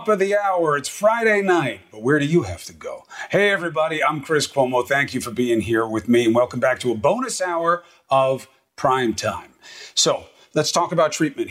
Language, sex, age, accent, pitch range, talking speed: English, male, 40-59, American, 140-195 Hz, 210 wpm